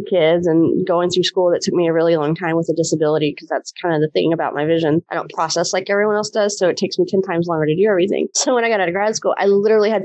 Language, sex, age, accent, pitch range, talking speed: English, female, 20-39, American, 165-205 Hz, 310 wpm